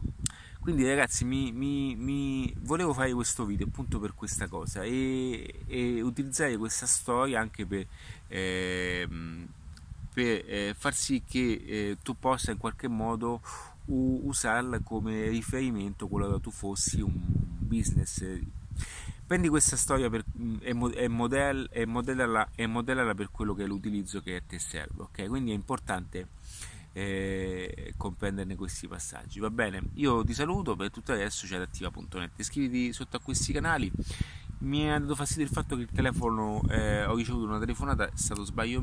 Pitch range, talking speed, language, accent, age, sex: 95-125 Hz, 155 wpm, Italian, native, 30-49, male